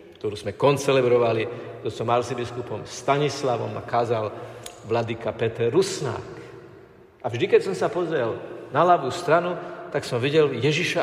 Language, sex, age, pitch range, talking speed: Slovak, male, 50-69, 120-165 Hz, 135 wpm